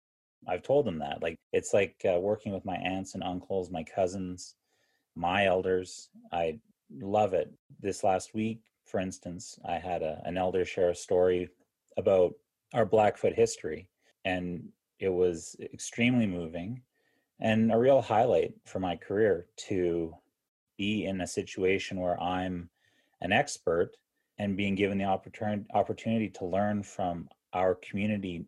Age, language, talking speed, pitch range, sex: 30-49, English, 145 wpm, 90-110 Hz, male